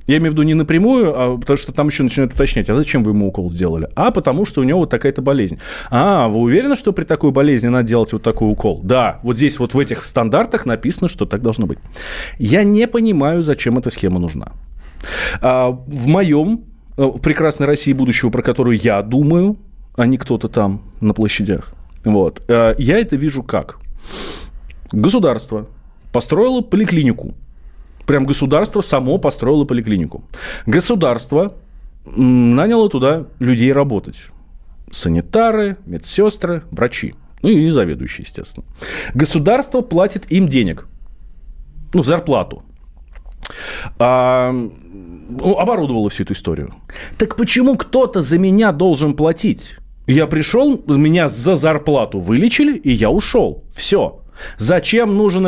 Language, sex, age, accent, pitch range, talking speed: Russian, male, 20-39, native, 110-165 Hz, 140 wpm